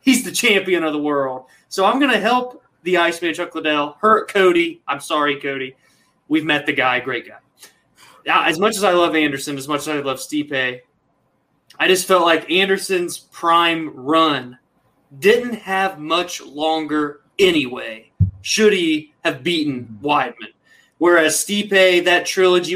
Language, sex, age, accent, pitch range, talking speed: English, male, 20-39, American, 140-175 Hz, 155 wpm